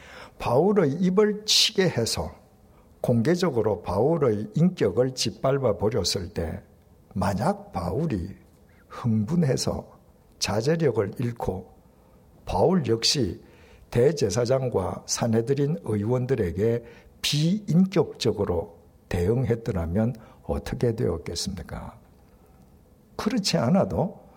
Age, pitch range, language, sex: 60-79, 100-150 Hz, Korean, male